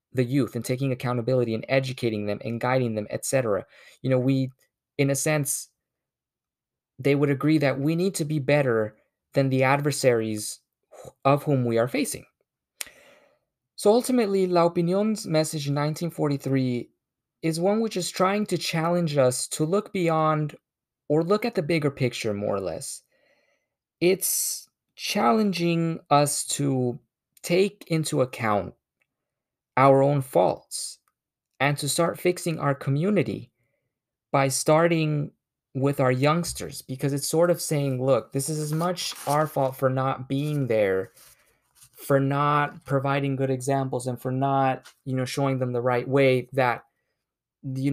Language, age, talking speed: English, 20-39, 145 wpm